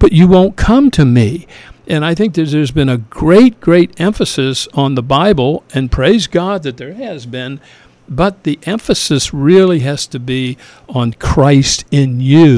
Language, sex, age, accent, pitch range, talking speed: English, male, 50-69, American, 130-170 Hz, 175 wpm